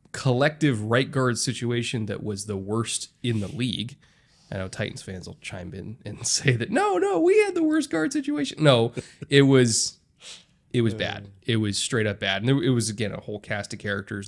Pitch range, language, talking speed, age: 105-140 Hz, English, 205 wpm, 20-39